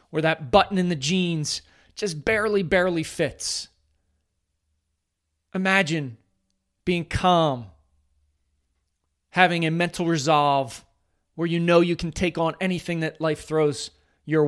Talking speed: 120 wpm